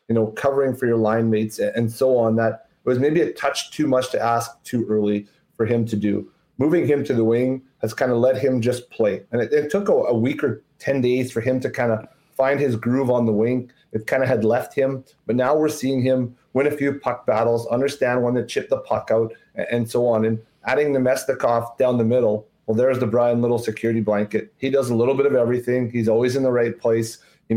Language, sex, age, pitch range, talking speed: English, male, 30-49, 115-135 Hz, 250 wpm